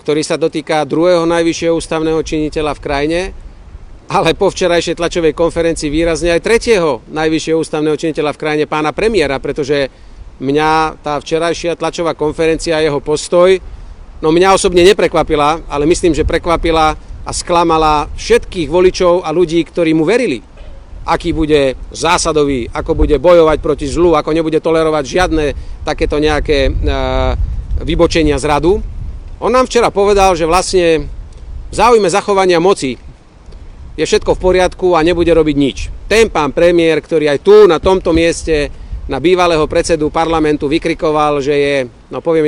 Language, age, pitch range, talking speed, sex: Slovak, 40-59, 150-170 Hz, 145 wpm, male